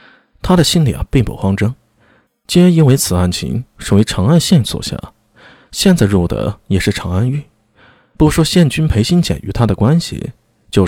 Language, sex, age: Chinese, male, 20-39